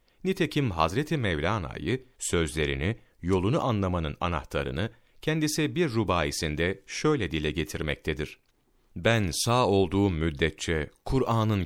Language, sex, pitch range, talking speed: Turkish, male, 80-115 Hz, 95 wpm